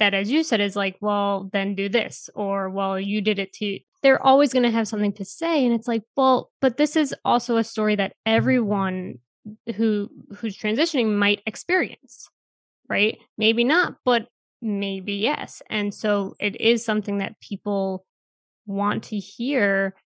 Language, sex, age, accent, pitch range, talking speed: English, female, 10-29, American, 195-235 Hz, 165 wpm